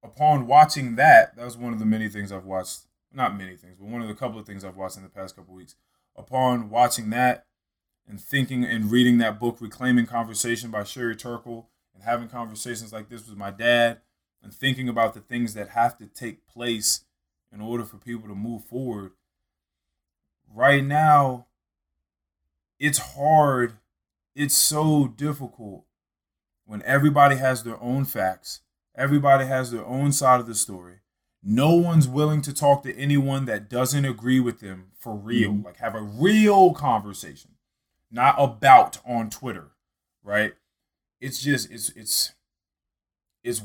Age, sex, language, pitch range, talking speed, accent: 20-39, male, English, 95-125 Hz, 160 wpm, American